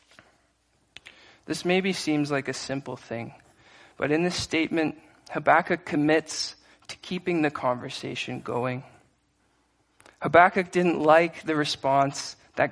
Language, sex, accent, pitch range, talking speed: English, male, American, 135-160 Hz, 115 wpm